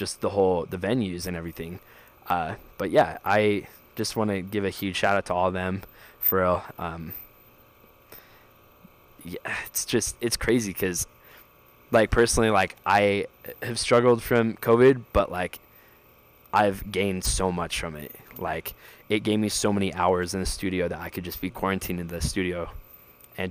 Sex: male